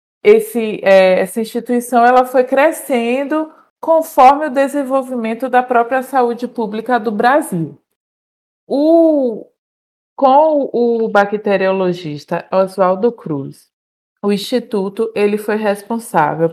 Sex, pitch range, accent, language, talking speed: female, 205-255 Hz, Brazilian, Portuguese, 80 wpm